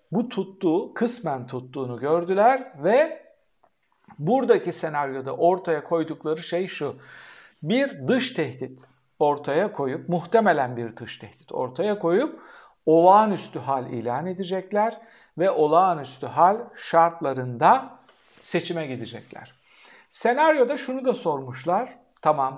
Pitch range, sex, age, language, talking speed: 135-210 Hz, male, 60-79, Turkish, 100 wpm